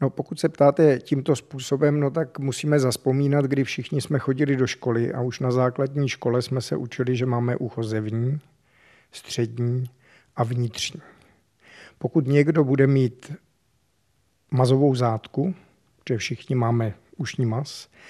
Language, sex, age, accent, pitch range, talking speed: Czech, male, 50-69, native, 125-145 Hz, 135 wpm